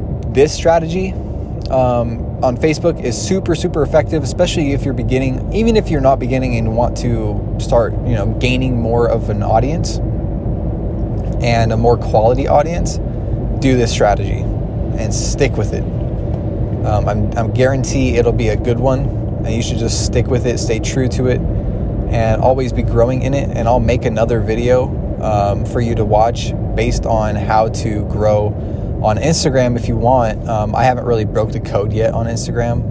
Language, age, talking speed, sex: English, 20-39, 175 wpm, male